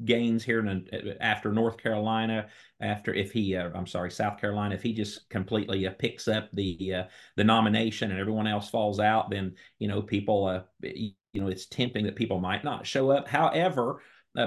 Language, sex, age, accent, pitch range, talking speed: English, male, 40-59, American, 95-115 Hz, 195 wpm